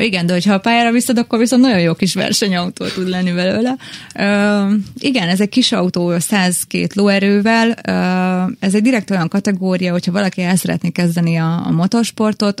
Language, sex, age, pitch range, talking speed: Hungarian, female, 20-39, 165-200 Hz, 175 wpm